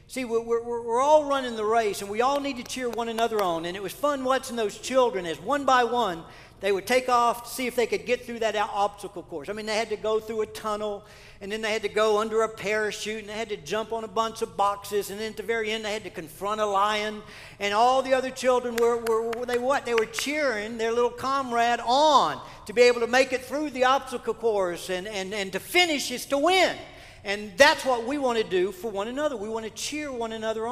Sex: male